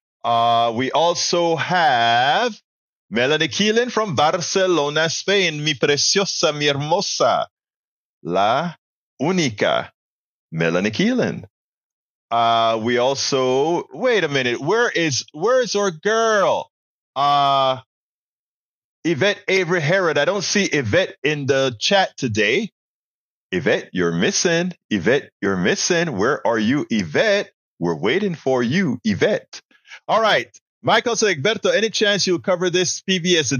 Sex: male